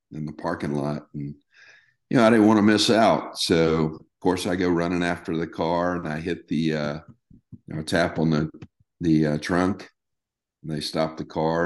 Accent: American